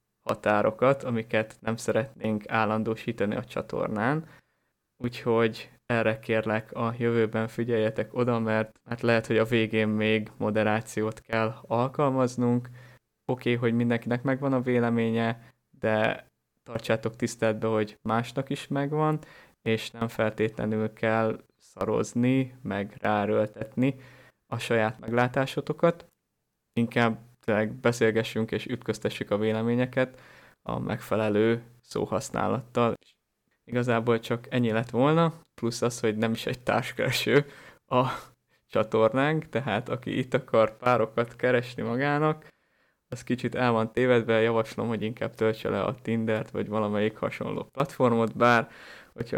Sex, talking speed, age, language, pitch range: male, 120 wpm, 20-39, Hungarian, 110-125 Hz